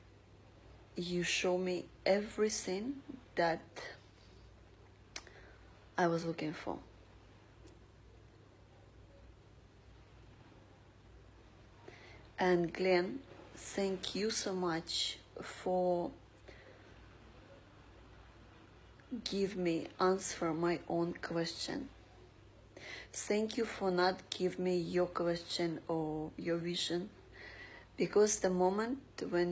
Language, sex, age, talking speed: English, female, 30-49, 75 wpm